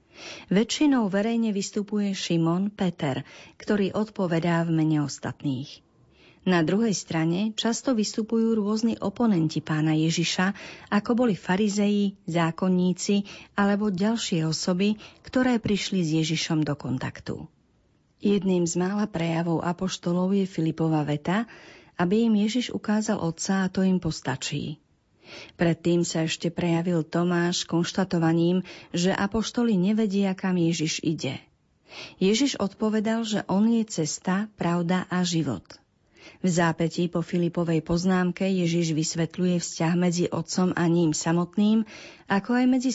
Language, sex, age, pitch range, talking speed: Slovak, female, 40-59, 165-210 Hz, 120 wpm